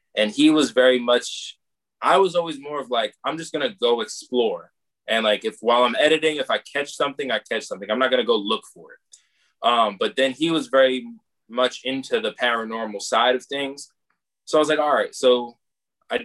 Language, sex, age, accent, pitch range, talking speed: English, male, 20-39, American, 125-175 Hz, 210 wpm